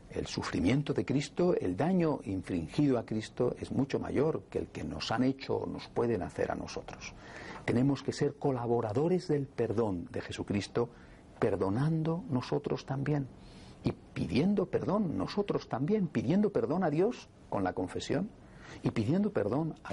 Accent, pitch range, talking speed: Spanish, 115-160 Hz, 155 wpm